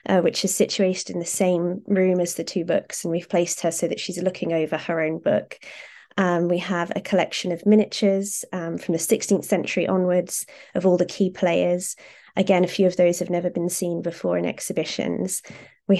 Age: 20-39